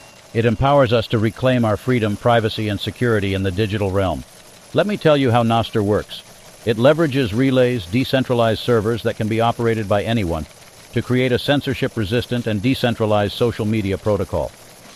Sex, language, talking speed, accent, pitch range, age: male, English, 165 wpm, American, 110-125 Hz, 60-79